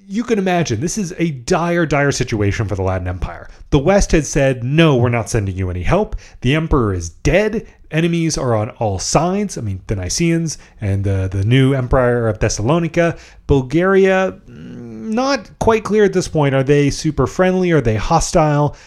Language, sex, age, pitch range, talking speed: English, male, 30-49, 100-160 Hz, 185 wpm